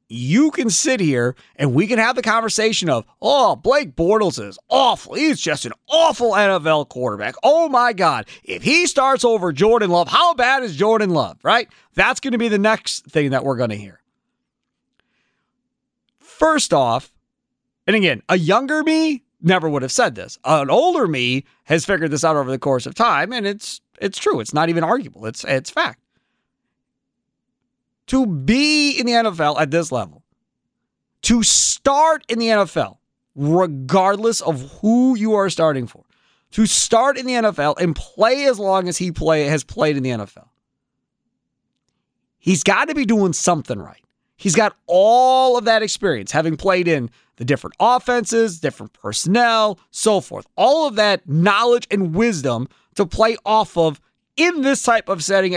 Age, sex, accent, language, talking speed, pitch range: 40-59, male, American, English, 170 wpm, 150-235 Hz